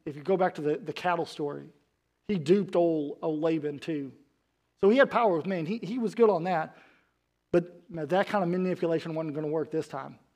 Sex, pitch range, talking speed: male, 145-185 Hz, 220 wpm